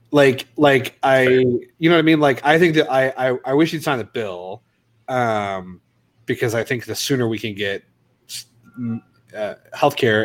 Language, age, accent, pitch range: English, 30-49, American, 100-130 Hz